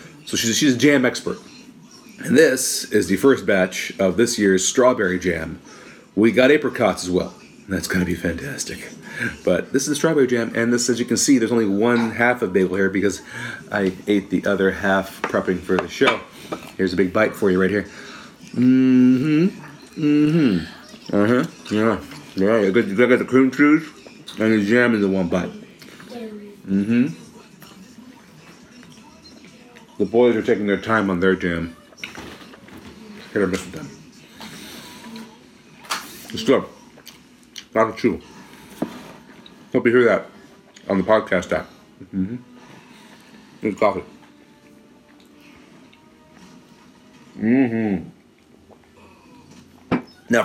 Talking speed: 140 wpm